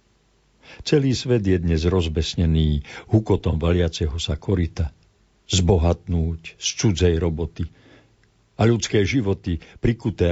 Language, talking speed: Slovak, 100 wpm